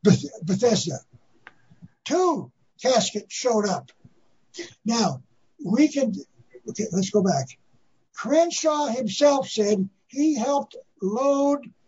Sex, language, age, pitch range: male, English, 60-79, 195-265 Hz